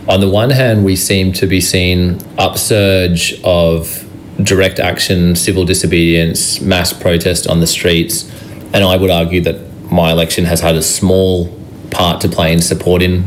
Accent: Australian